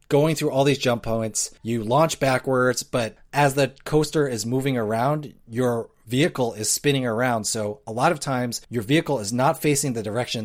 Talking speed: 190 wpm